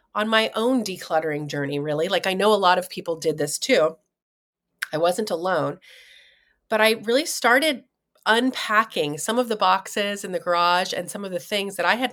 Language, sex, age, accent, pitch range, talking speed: English, female, 30-49, American, 175-225 Hz, 195 wpm